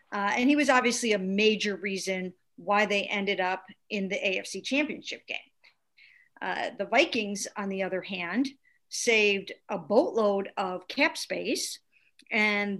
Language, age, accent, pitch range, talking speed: English, 50-69, American, 195-250 Hz, 145 wpm